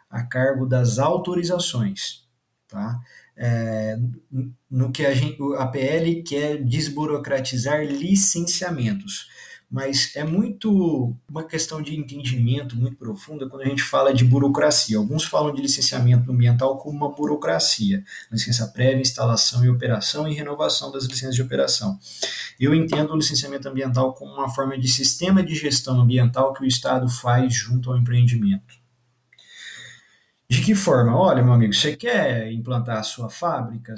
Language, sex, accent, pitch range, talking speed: Portuguese, male, Brazilian, 125-165 Hz, 145 wpm